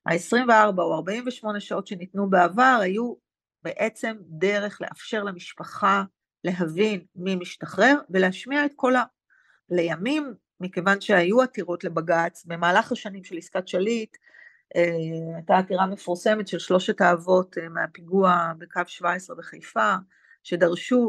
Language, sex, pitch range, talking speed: Hebrew, female, 180-230 Hz, 110 wpm